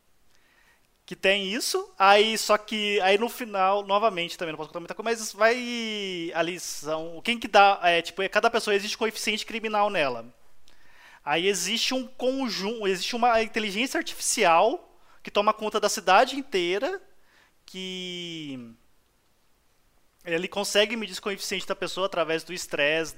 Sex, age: male, 20-39